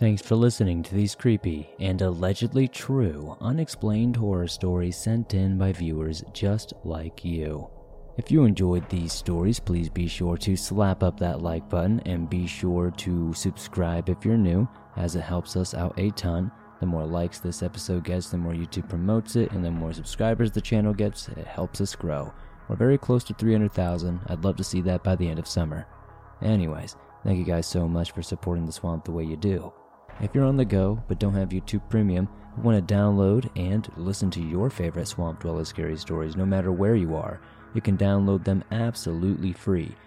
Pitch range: 85-105 Hz